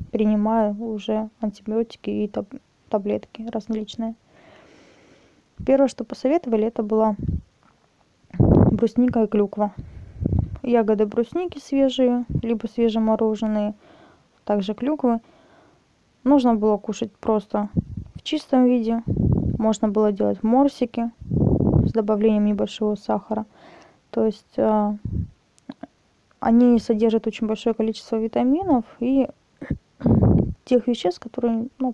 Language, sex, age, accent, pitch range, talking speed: Russian, female, 20-39, native, 215-255 Hz, 90 wpm